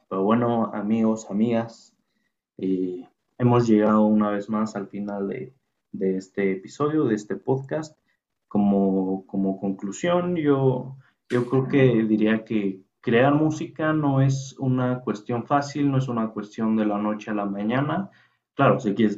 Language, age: Spanish, 20-39